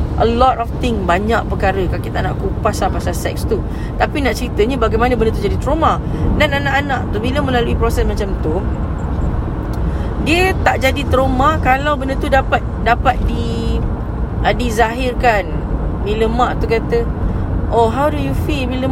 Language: English